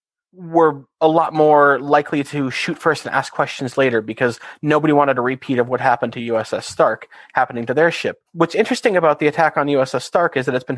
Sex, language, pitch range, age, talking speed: male, English, 130-155 Hz, 30-49, 215 wpm